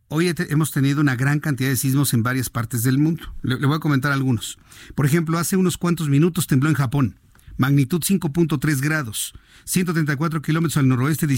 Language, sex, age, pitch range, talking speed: Spanish, male, 50-69, 135-175 Hz, 190 wpm